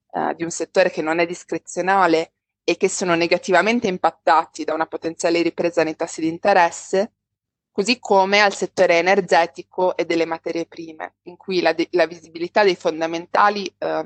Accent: native